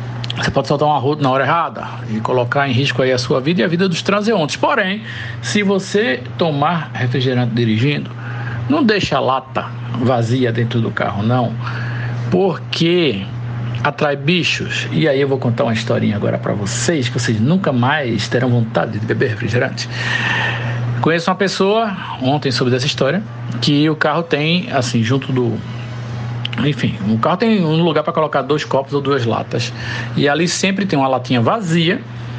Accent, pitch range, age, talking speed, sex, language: Brazilian, 120-155 Hz, 60-79, 170 wpm, male, Portuguese